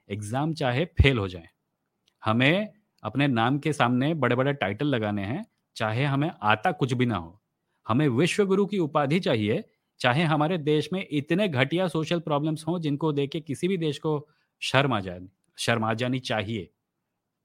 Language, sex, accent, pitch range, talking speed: English, male, Indian, 115-155 Hz, 120 wpm